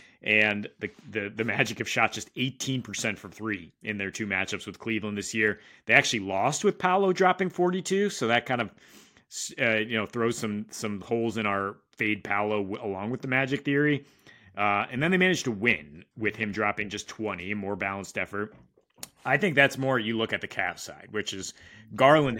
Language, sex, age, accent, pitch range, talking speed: English, male, 30-49, American, 100-125 Hz, 200 wpm